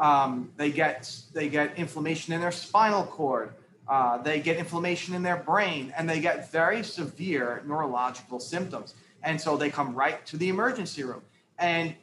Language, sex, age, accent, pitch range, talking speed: English, male, 30-49, American, 155-200 Hz, 170 wpm